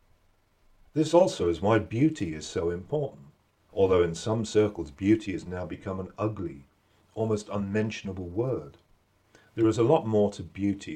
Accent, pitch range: British, 90-110 Hz